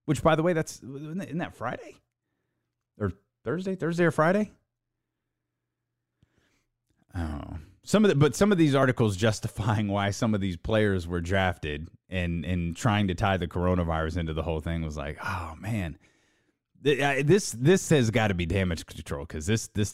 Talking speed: 170 wpm